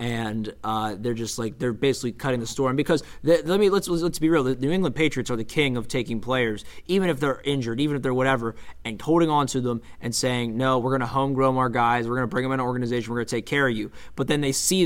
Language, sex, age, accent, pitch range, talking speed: English, male, 20-39, American, 125-150 Hz, 285 wpm